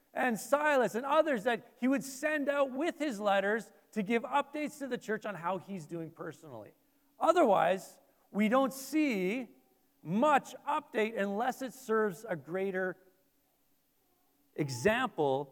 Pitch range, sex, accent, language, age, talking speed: 185-260 Hz, male, American, English, 40-59, 135 wpm